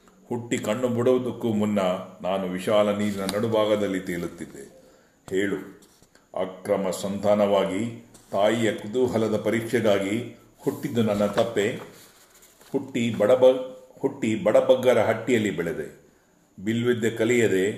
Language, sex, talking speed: Kannada, male, 85 wpm